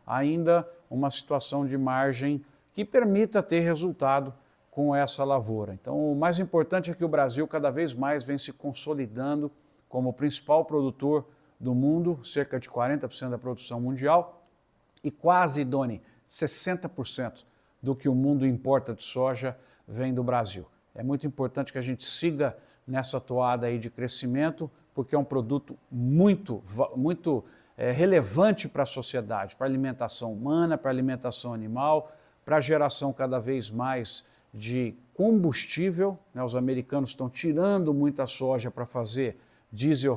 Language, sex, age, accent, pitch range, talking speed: Portuguese, male, 60-79, Brazilian, 125-155 Hz, 150 wpm